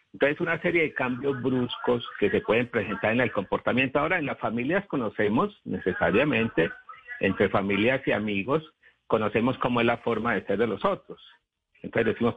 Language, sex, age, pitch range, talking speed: Spanish, male, 50-69, 100-130 Hz, 170 wpm